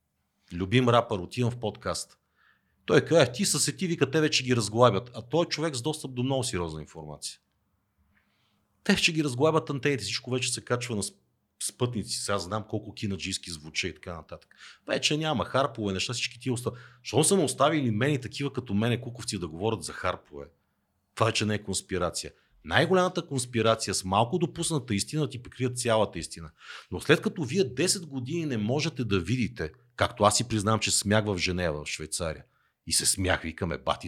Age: 40-59